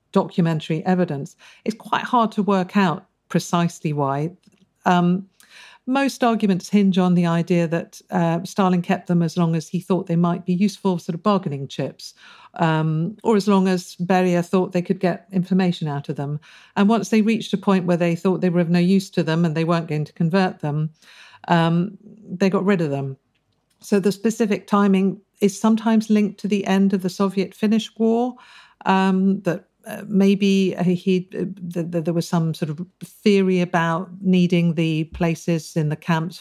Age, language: 50-69, English